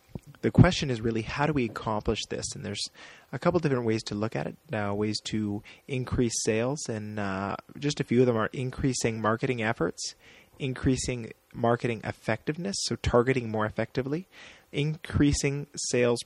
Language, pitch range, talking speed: English, 110-130 Hz, 165 wpm